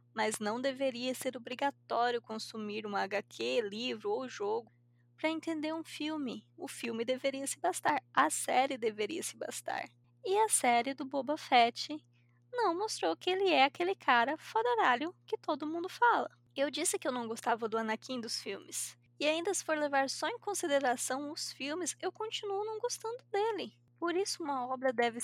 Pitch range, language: 230-325 Hz, Portuguese